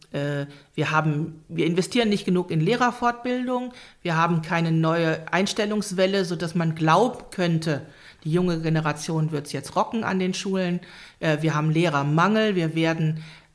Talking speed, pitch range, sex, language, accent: 140 wpm, 155-185 Hz, female, English, German